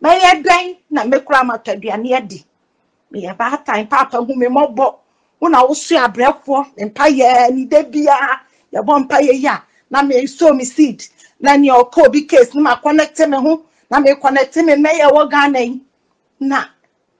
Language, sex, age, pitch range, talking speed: English, female, 50-69, 230-300 Hz, 180 wpm